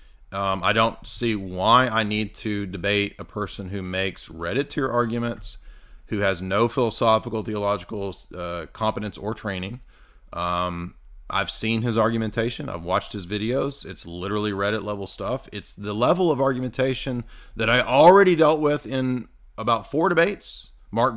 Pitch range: 100-125 Hz